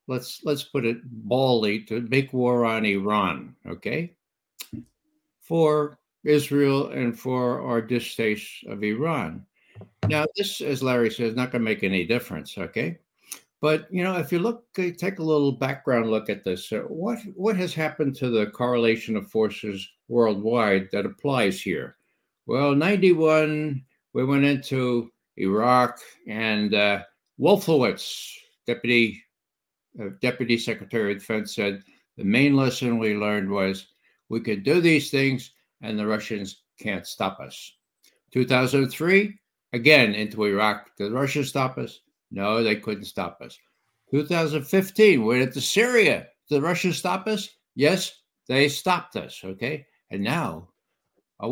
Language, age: English, 60-79